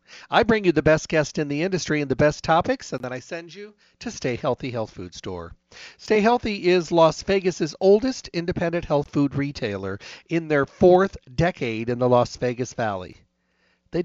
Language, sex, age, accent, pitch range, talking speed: English, male, 50-69, American, 120-170 Hz, 190 wpm